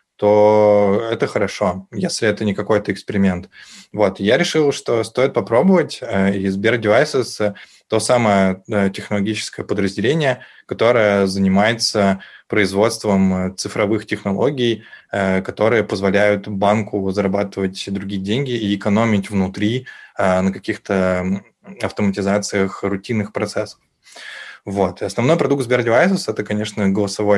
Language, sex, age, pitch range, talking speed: Russian, male, 20-39, 100-115 Hz, 105 wpm